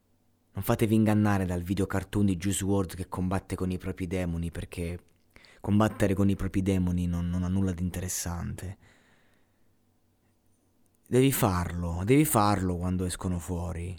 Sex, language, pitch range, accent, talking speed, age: male, Italian, 85-110 Hz, native, 145 wpm, 30-49